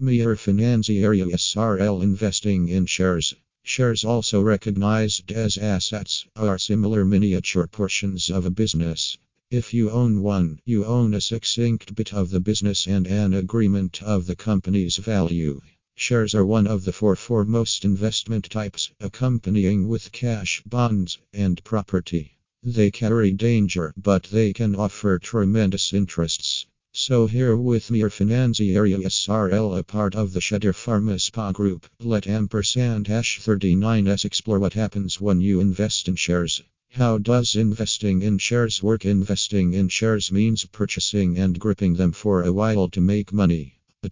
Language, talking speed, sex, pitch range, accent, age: Italian, 145 wpm, male, 95-110 Hz, American, 50-69